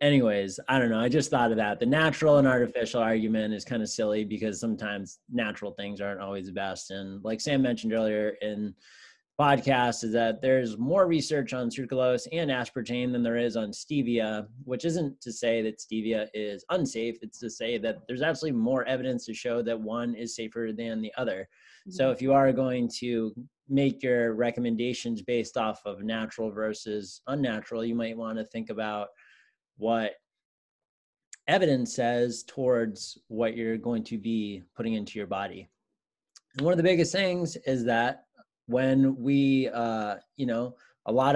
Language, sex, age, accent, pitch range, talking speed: English, male, 20-39, American, 110-130 Hz, 175 wpm